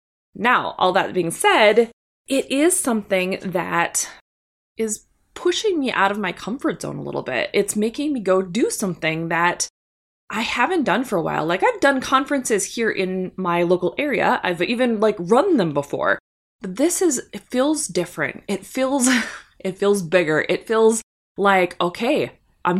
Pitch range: 185-265 Hz